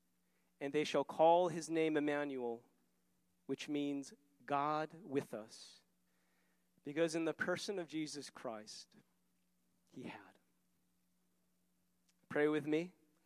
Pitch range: 135-165 Hz